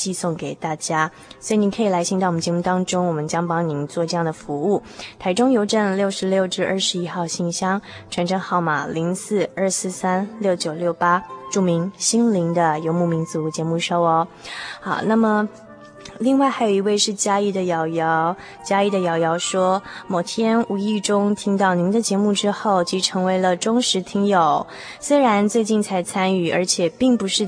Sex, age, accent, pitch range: female, 20-39, native, 170-210 Hz